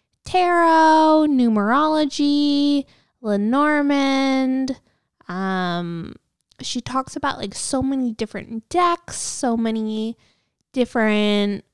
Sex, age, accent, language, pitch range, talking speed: female, 10-29, American, English, 205-285 Hz, 75 wpm